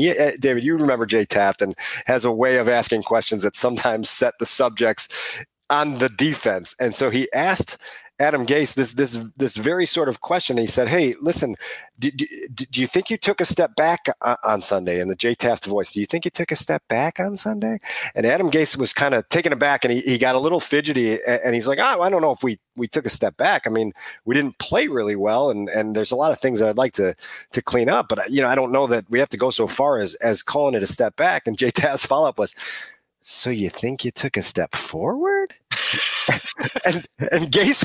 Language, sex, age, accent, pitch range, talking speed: English, male, 40-59, American, 120-180 Hz, 240 wpm